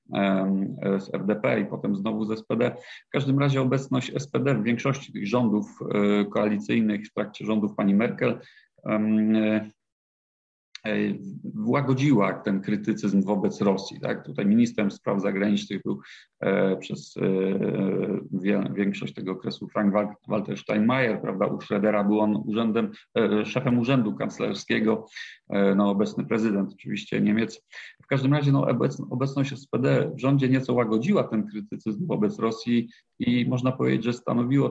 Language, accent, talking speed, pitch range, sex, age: Polish, native, 135 wpm, 100-125 Hz, male, 40-59